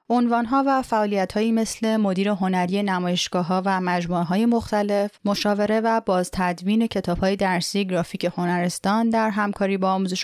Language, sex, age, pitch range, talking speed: Persian, female, 30-49, 185-220 Hz, 130 wpm